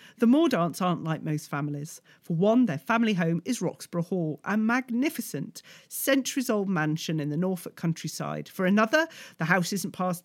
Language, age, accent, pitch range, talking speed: English, 40-59, British, 160-215 Hz, 170 wpm